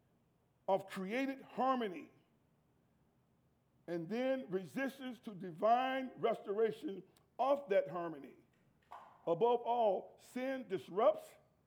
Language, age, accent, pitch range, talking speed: English, 50-69, American, 180-240 Hz, 80 wpm